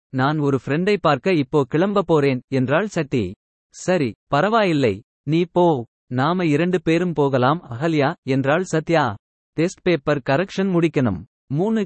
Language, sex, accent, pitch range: Tamil, male, native, 135-175 Hz